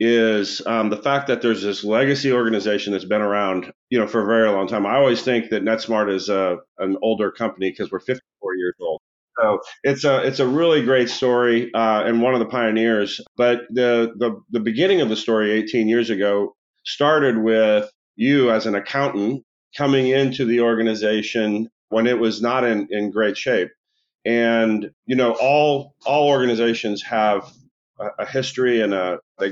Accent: American